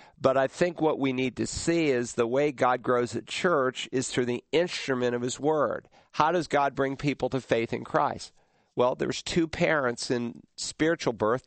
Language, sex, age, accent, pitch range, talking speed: English, male, 50-69, American, 115-135 Hz, 200 wpm